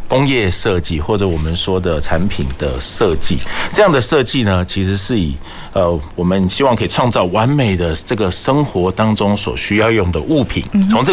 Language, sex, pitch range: Chinese, male, 85-115 Hz